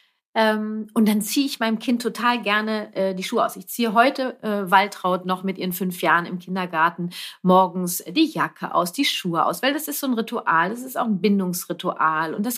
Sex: female